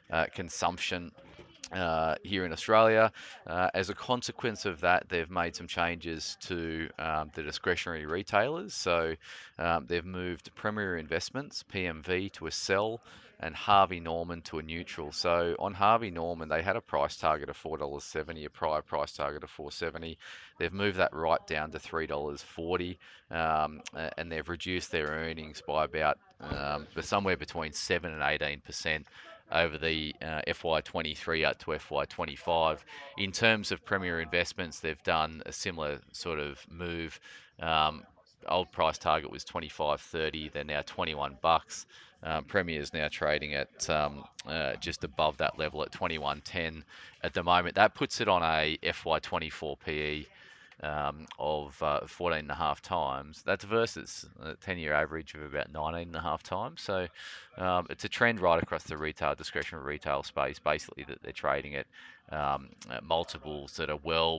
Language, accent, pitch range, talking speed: English, Australian, 75-85 Hz, 160 wpm